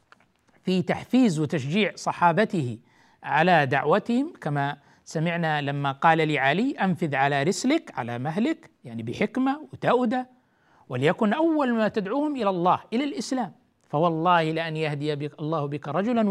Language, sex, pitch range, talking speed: Arabic, male, 160-210 Hz, 120 wpm